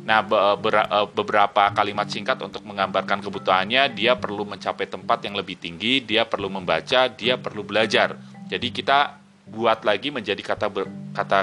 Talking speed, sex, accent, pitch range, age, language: 145 wpm, male, native, 100-135 Hz, 30-49, Indonesian